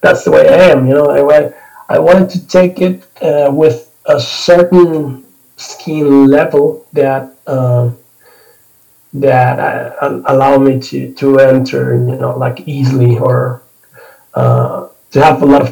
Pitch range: 130-155 Hz